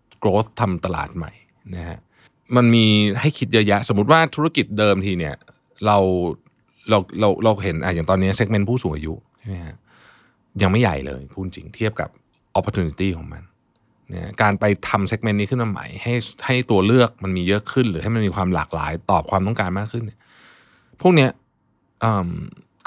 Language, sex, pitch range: Thai, male, 90-130 Hz